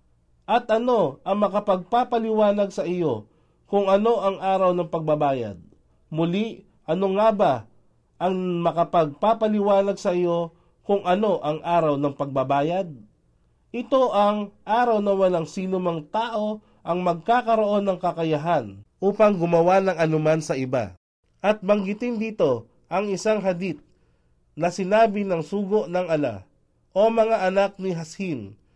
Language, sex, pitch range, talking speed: Filipino, male, 150-200 Hz, 125 wpm